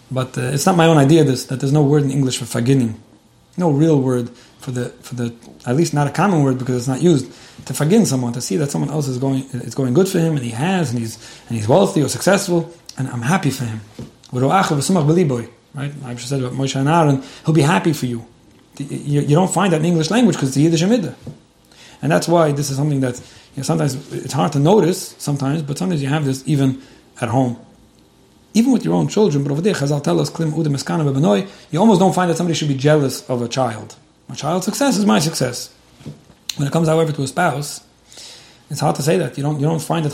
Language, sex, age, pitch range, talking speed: English, male, 30-49, 130-165 Hz, 225 wpm